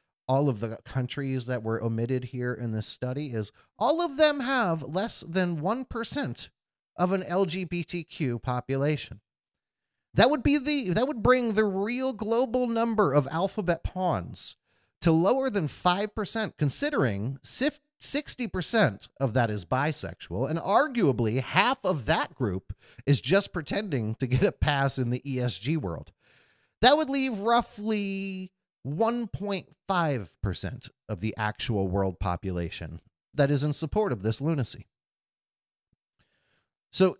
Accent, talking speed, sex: American, 130 wpm, male